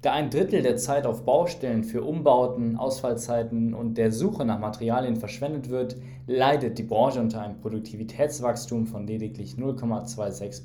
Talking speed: 145 wpm